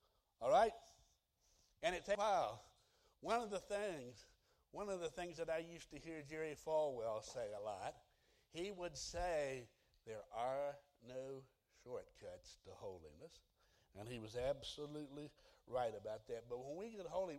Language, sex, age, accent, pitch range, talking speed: English, male, 60-79, American, 115-165 Hz, 160 wpm